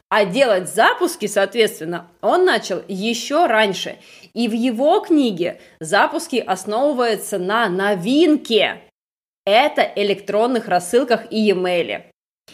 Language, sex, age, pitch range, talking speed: Russian, female, 20-39, 205-290 Hz, 100 wpm